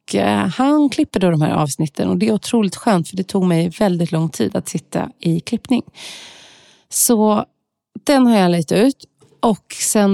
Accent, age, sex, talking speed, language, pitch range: native, 30-49, female, 185 wpm, Swedish, 165-220 Hz